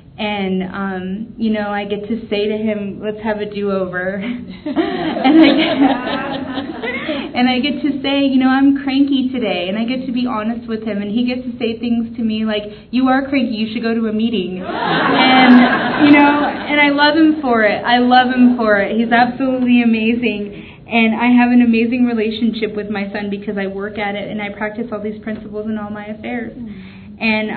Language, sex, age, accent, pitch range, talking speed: English, female, 20-39, American, 195-240 Hz, 200 wpm